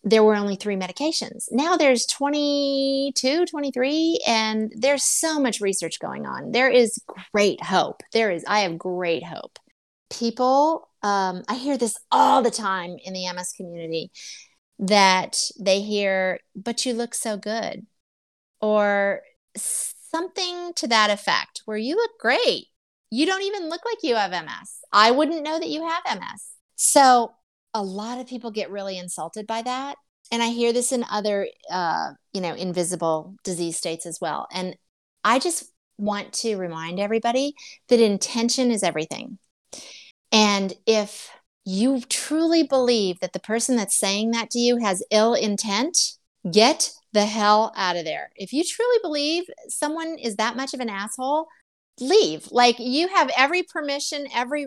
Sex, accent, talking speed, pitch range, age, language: female, American, 160 wpm, 200-280 Hz, 30-49, English